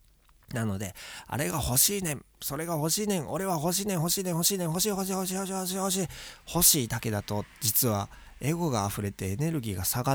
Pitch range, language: 110-155 Hz, Japanese